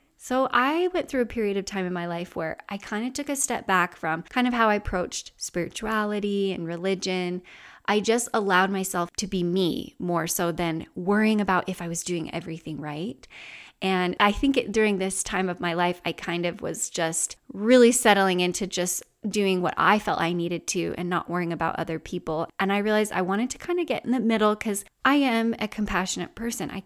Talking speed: 215 wpm